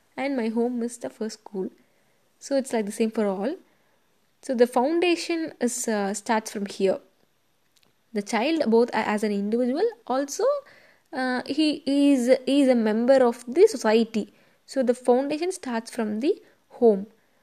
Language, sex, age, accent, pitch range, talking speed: English, female, 10-29, Indian, 220-270 Hz, 160 wpm